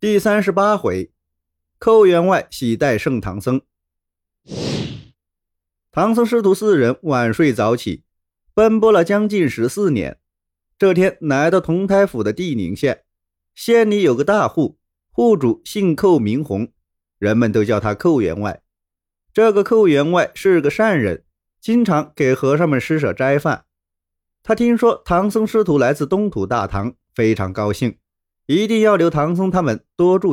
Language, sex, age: Chinese, male, 30-49